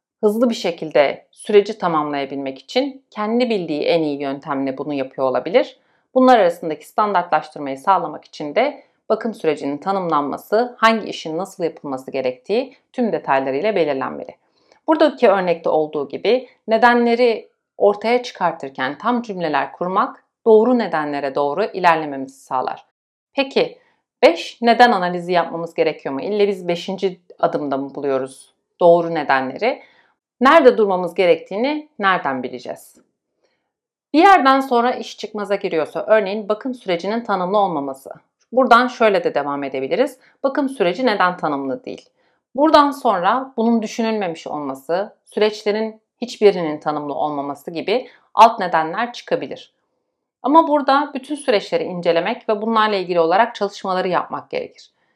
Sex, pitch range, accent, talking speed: female, 160-240 Hz, native, 120 wpm